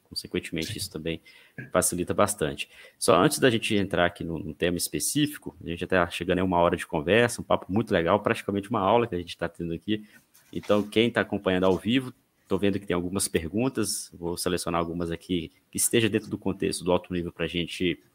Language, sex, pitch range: Portuguese, male, 90-110 Hz